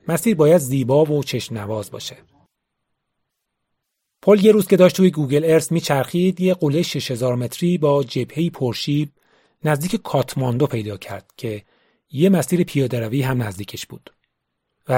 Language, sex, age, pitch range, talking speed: Persian, male, 30-49, 125-165 Hz, 135 wpm